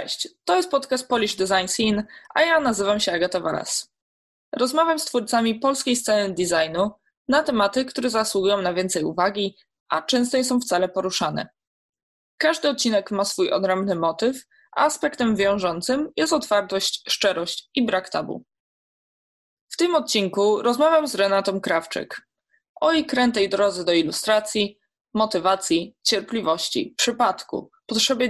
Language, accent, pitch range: Polish, native, 190-255 Hz